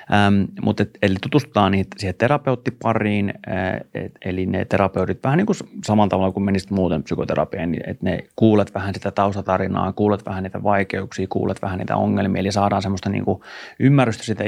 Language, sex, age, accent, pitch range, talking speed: Finnish, male, 30-49, native, 95-105 Hz, 170 wpm